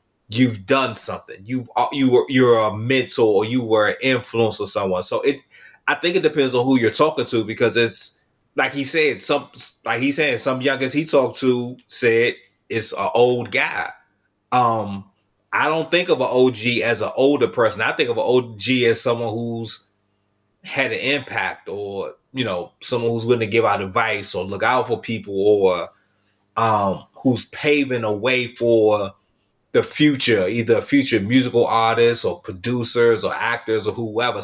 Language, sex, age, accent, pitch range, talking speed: English, male, 30-49, American, 110-140 Hz, 180 wpm